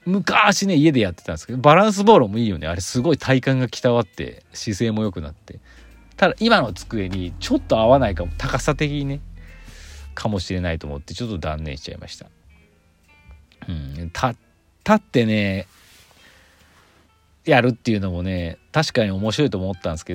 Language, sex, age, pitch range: Japanese, male, 40-59, 85-125 Hz